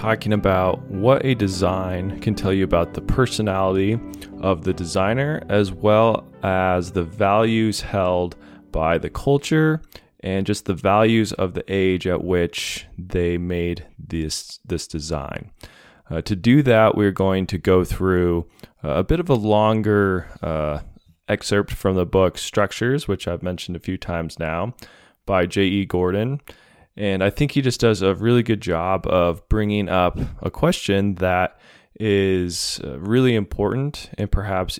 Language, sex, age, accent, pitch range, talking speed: English, male, 20-39, American, 90-110 Hz, 150 wpm